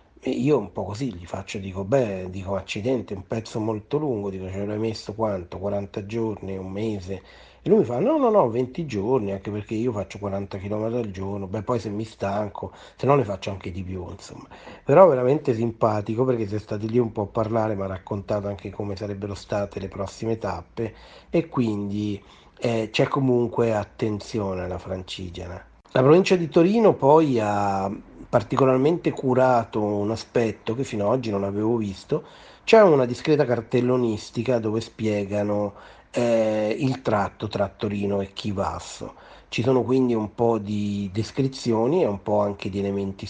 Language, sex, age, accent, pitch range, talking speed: Italian, male, 40-59, native, 100-120 Hz, 175 wpm